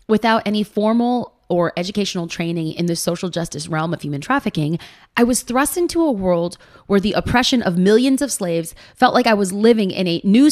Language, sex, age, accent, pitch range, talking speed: English, female, 30-49, American, 170-230 Hz, 200 wpm